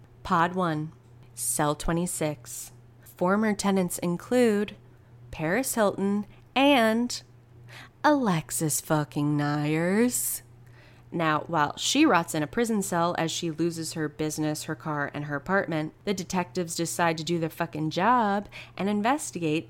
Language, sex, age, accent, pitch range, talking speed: English, female, 20-39, American, 150-205 Hz, 125 wpm